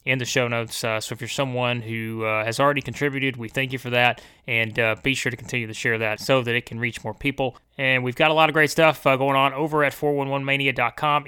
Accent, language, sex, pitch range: American, English, male, 120-140 Hz